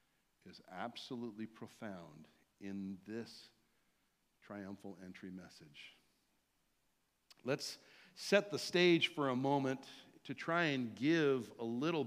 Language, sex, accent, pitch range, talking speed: English, male, American, 120-195 Hz, 105 wpm